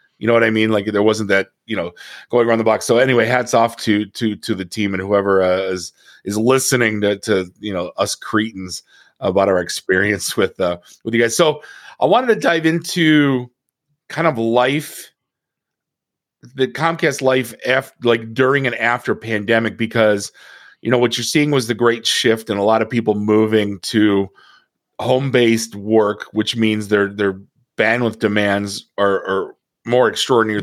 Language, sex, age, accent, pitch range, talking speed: English, male, 30-49, American, 105-125 Hz, 180 wpm